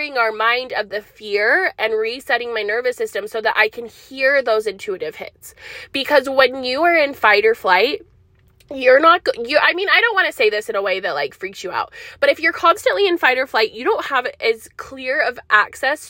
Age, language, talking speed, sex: 20-39, English, 225 wpm, female